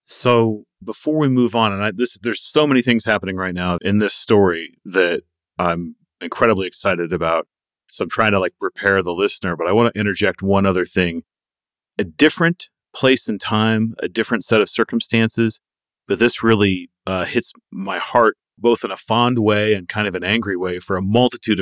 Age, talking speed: 40-59, 195 wpm